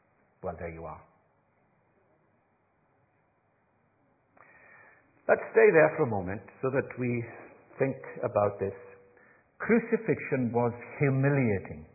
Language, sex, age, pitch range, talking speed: English, male, 60-79, 110-165 Hz, 95 wpm